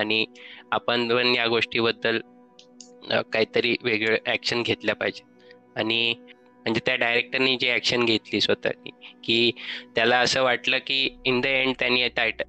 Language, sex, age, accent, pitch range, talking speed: Marathi, male, 20-39, native, 110-130 Hz, 135 wpm